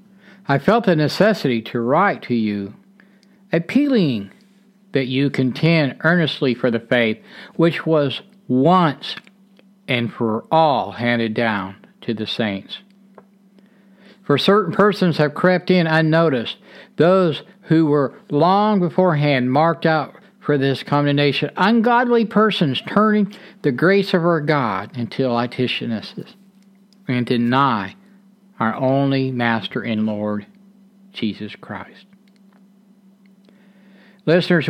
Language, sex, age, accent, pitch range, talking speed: English, male, 60-79, American, 130-200 Hz, 110 wpm